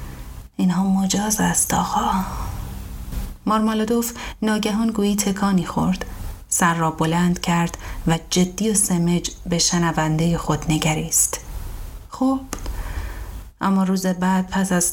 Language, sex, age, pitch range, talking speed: Persian, female, 30-49, 150-175 Hz, 110 wpm